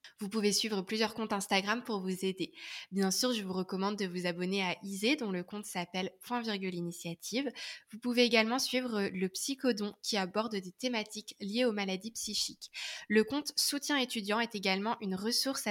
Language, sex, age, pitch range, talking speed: French, female, 20-39, 195-235 Hz, 185 wpm